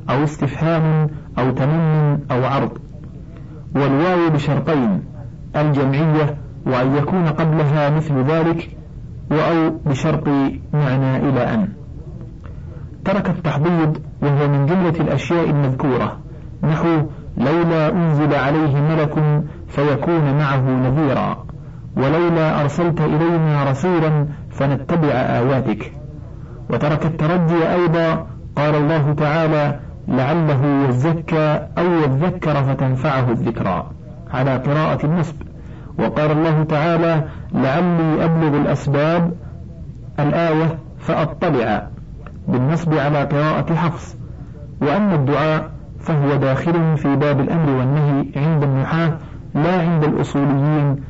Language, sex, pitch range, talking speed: Arabic, male, 135-160 Hz, 95 wpm